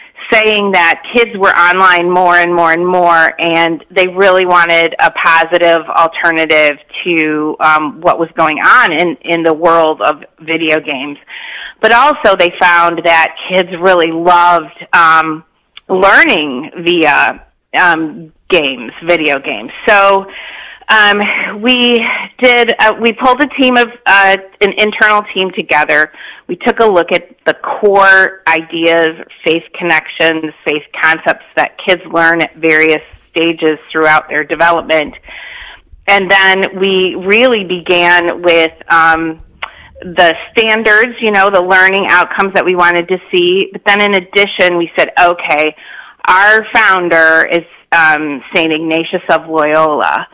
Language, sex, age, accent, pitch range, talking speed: English, female, 30-49, American, 160-195 Hz, 135 wpm